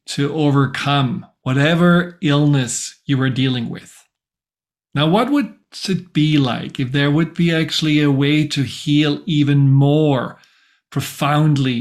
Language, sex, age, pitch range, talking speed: English, male, 40-59, 140-160 Hz, 130 wpm